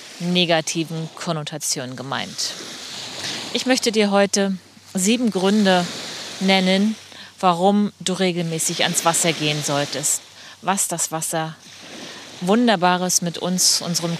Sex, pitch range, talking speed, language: female, 165-195 Hz, 100 wpm, German